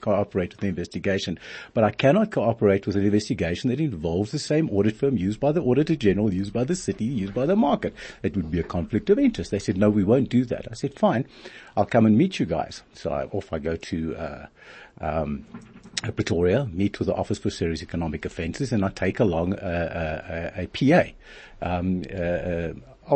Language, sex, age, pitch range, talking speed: English, male, 60-79, 90-120 Hz, 205 wpm